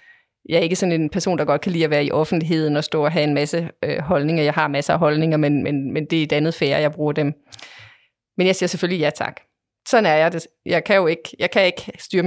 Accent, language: native, Danish